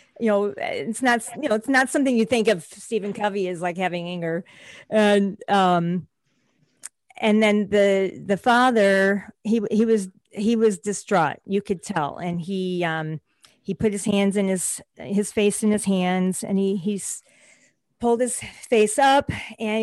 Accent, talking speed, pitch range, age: American, 170 wpm, 185-220 Hz, 40-59